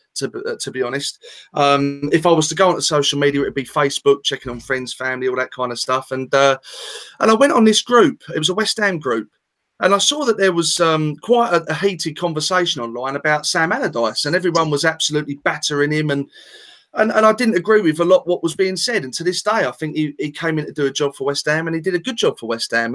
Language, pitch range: English, 145-210 Hz